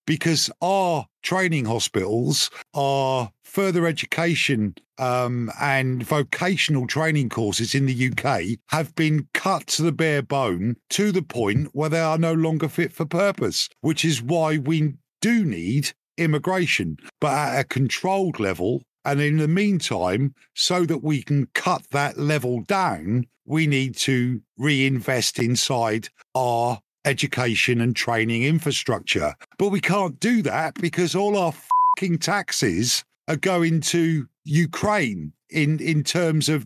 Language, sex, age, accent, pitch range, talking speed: English, male, 50-69, British, 135-175 Hz, 140 wpm